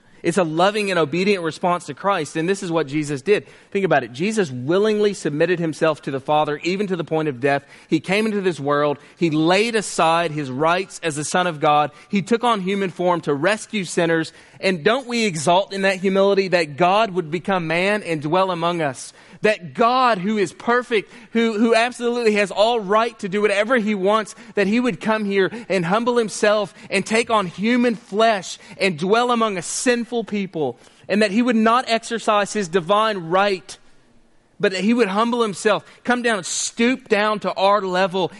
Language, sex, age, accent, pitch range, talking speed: English, male, 30-49, American, 175-225 Hz, 200 wpm